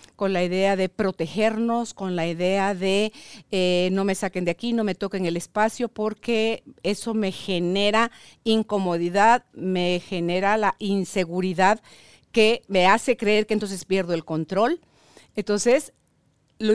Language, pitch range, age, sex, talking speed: Spanish, 180-225 Hz, 50-69, female, 145 wpm